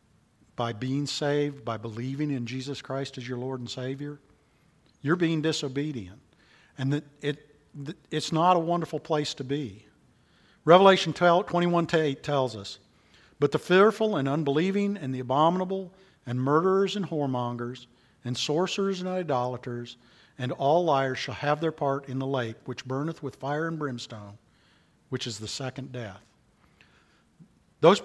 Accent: American